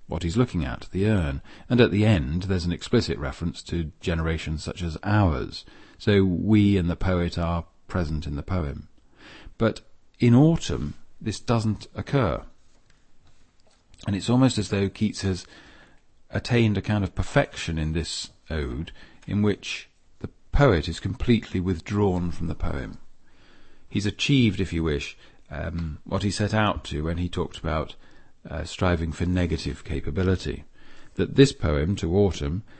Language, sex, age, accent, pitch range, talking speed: English, male, 40-59, British, 80-105 Hz, 155 wpm